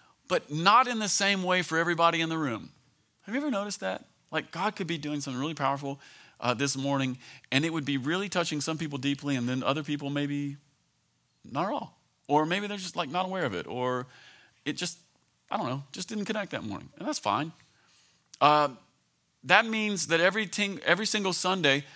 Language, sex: English, male